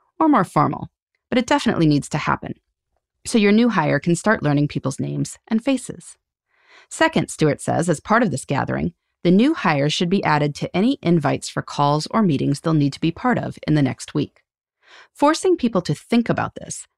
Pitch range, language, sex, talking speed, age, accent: 150-235 Hz, English, female, 200 wpm, 30-49, American